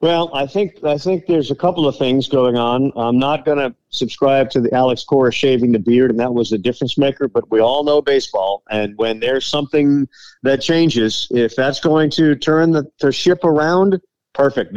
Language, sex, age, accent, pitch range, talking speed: English, male, 50-69, American, 120-150 Hz, 205 wpm